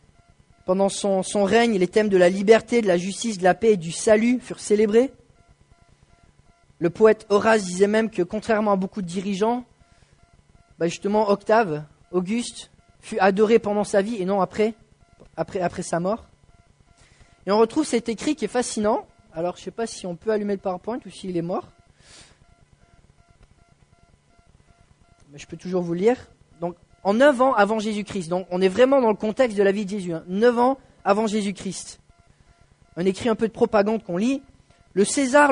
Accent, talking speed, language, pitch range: French, 185 wpm, English, 185-230 Hz